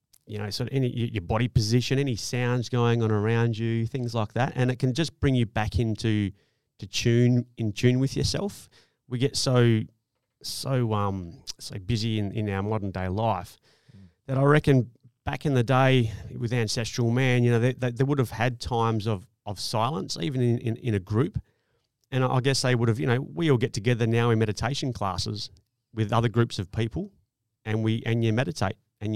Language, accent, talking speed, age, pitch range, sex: English, Australian, 205 wpm, 30-49, 110-130 Hz, male